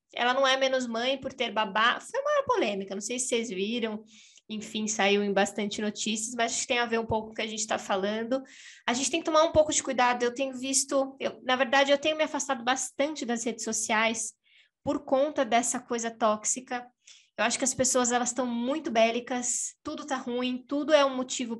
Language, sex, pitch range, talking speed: Portuguese, female, 230-270 Hz, 220 wpm